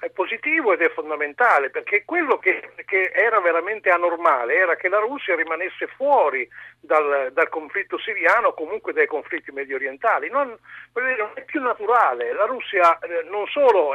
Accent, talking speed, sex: native, 160 wpm, male